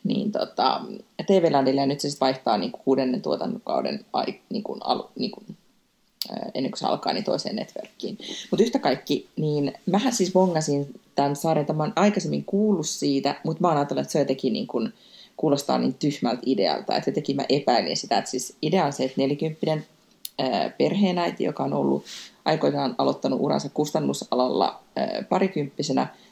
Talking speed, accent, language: 155 wpm, native, Finnish